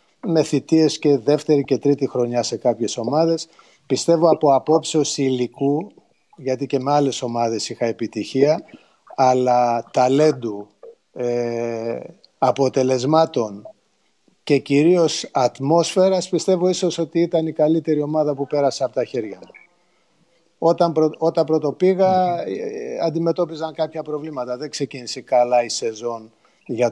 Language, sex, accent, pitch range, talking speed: Greek, male, native, 125-160 Hz, 125 wpm